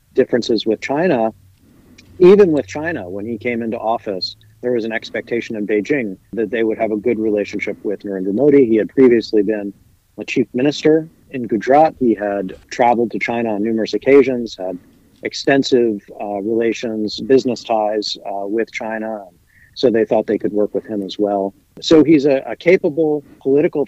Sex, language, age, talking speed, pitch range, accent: male, English, 50-69, 175 wpm, 105-140 Hz, American